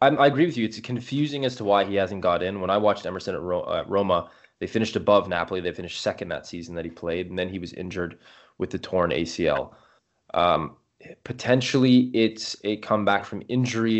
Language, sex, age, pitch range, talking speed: English, male, 20-39, 90-110 Hz, 210 wpm